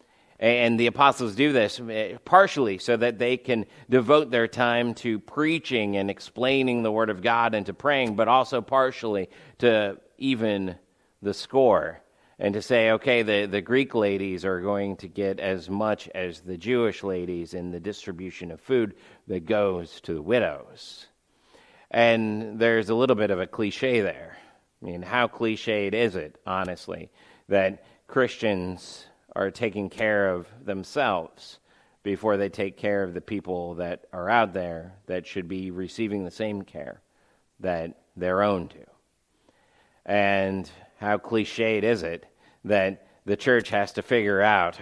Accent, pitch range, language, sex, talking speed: American, 95-115 Hz, English, male, 155 wpm